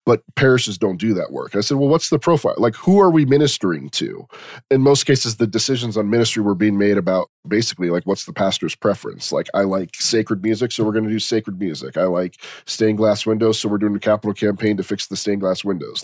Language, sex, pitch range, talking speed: English, male, 100-125 Hz, 240 wpm